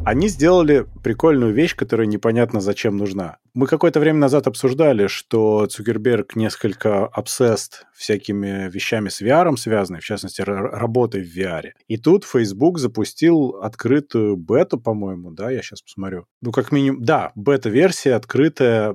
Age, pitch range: 30-49, 105-130 Hz